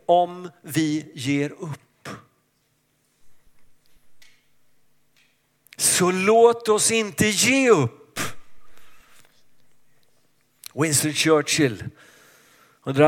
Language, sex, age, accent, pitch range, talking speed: Swedish, male, 50-69, native, 125-190 Hz, 60 wpm